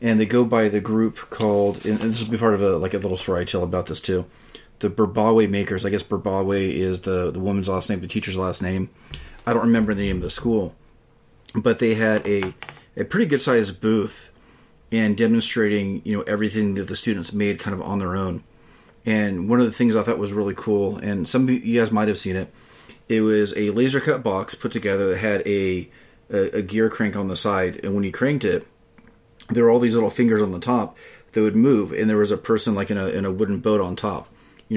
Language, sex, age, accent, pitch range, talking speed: English, male, 30-49, American, 95-115 Hz, 235 wpm